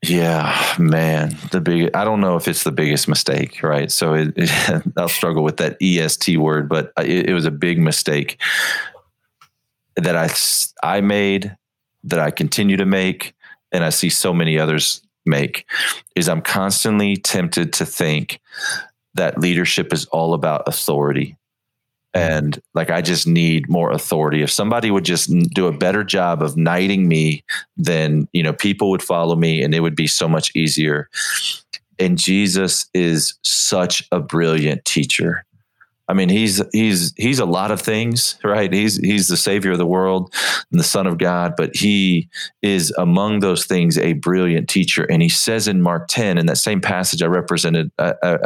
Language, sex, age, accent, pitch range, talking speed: English, male, 40-59, American, 80-100 Hz, 175 wpm